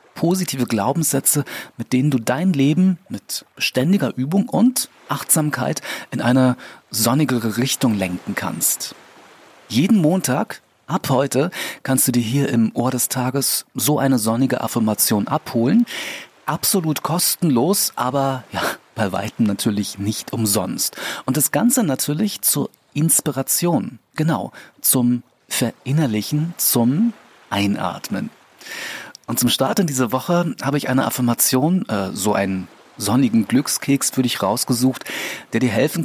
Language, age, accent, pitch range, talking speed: German, 40-59, German, 110-150 Hz, 125 wpm